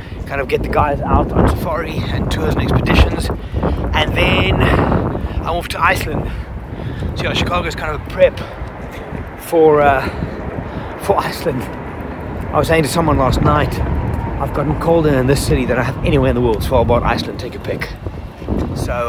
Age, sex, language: 30-49, male, English